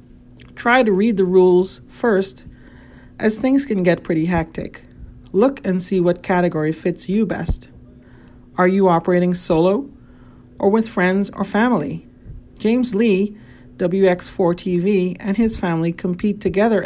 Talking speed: 130 wpm